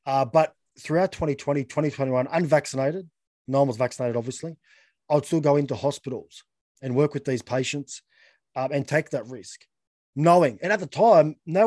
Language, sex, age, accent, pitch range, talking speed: English, male, 20-39, Australian, 135-165 Hz, 170 wpm